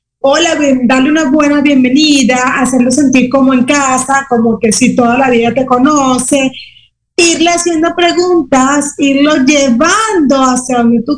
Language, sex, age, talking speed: Spanish, female, 30-49, 140 wpm